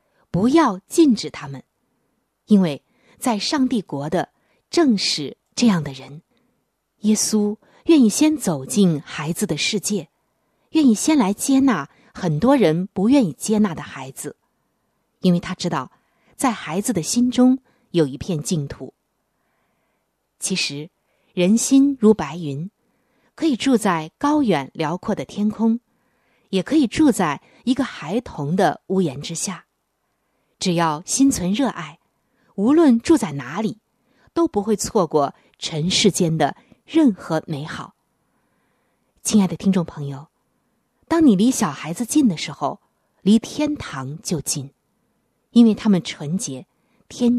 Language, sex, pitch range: Chinese, female, 160-245 Hz